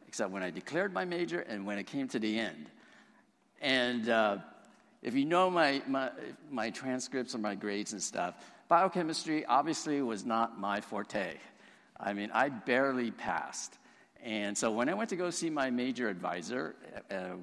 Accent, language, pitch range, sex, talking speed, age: American, English, 100-125 Hz, male, 170 wpm, 50-69